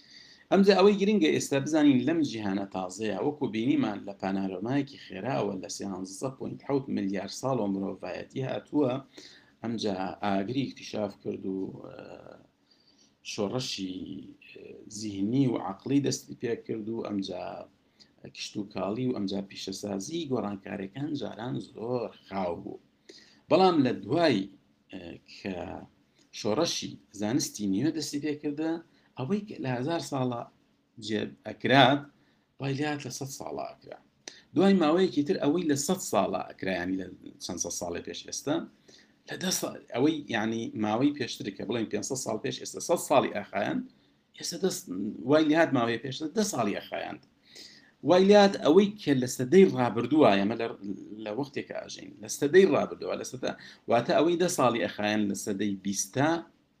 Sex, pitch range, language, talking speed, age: male, 100-150 Hz, English, 65 wpm, 50-69